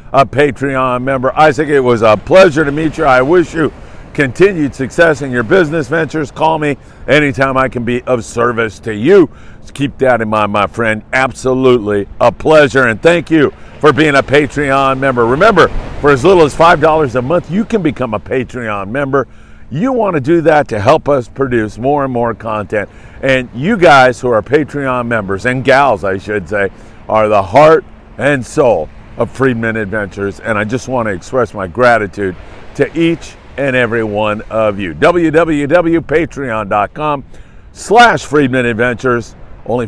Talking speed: 170 wpm